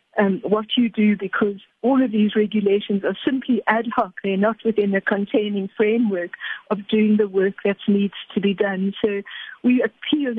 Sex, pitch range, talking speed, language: female, 200-235 Hz, 180 wpm, English